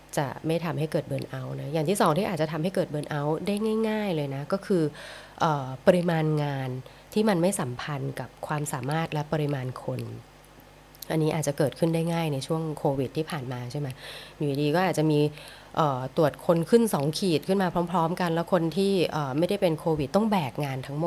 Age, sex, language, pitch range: 20-39, female, English, 145-180 Hz